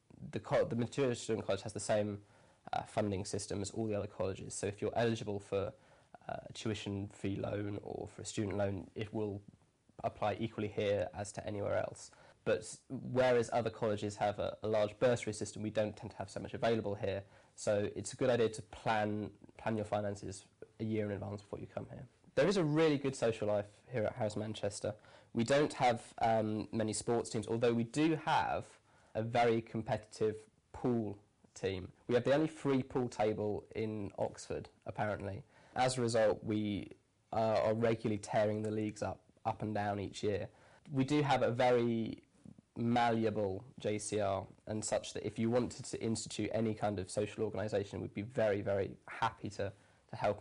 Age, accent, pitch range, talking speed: 20-39, British, 105-115 Hz, 190 wpm